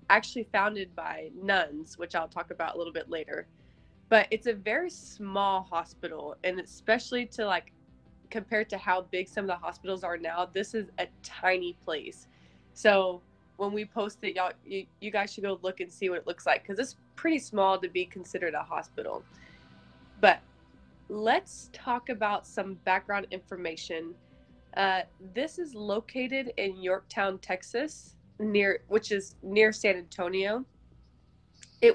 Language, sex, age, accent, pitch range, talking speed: English, female, 20-39, American, 180-215 Hz, 160 wpm